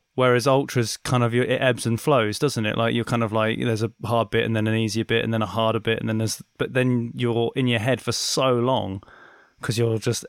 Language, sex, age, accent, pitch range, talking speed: English, male, 20-39, British, 110-135 Hz, 255 wpm